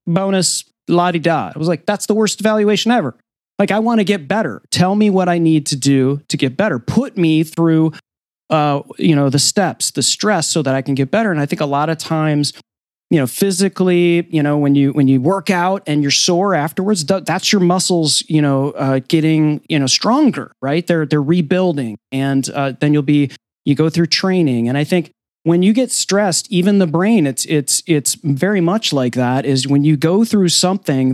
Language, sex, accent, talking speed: English, male, American, 215 wpm